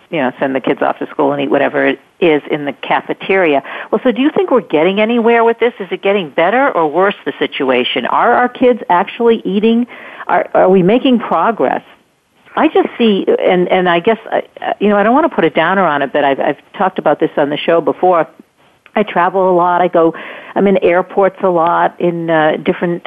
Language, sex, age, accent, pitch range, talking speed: English, female, 50-69, American, 160-205 Hz, 225 wpm